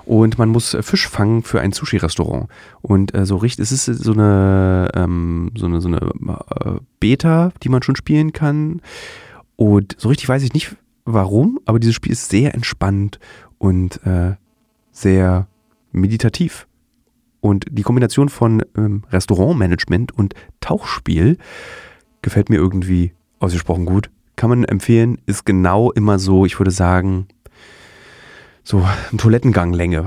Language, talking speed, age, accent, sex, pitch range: German, 140 wpm, 30-49, German, male, 95-120 Hz